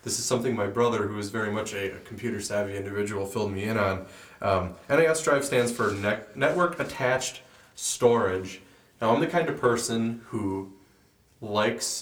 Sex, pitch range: male, 100-125 Hz